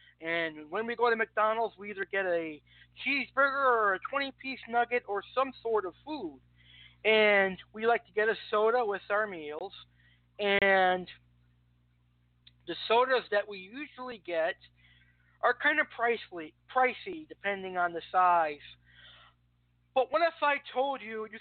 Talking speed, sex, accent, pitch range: 150 wpm, male, American, 170-250 Hz